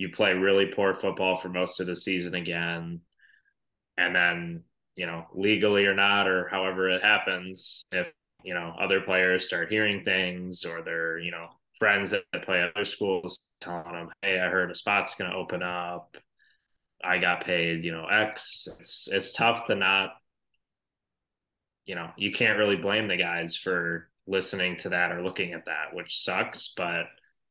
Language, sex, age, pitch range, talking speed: English, male, 20-39, 85-95 Hz, 175 wpm